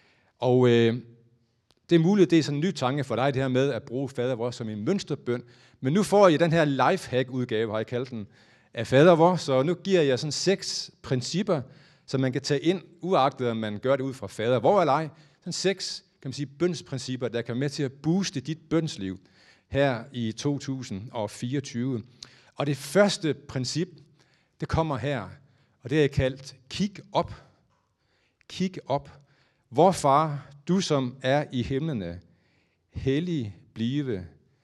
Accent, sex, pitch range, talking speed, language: native, male, 120-160 Hz, 175 wpm, Danish